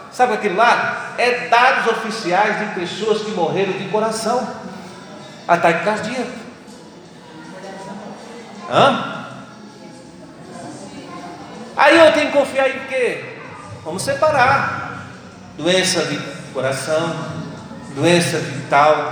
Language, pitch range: Portuguese, 155-230 Hz